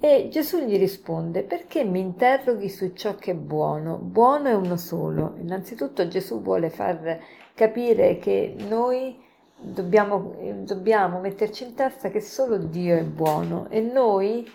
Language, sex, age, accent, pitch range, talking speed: Italian, female, 50-69, native, 175-225 Hz, 145 wpm